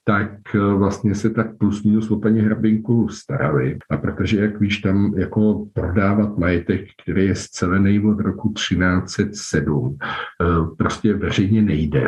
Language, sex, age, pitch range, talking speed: Czech, male, 50-69, 90-105 Hz, 130 wpm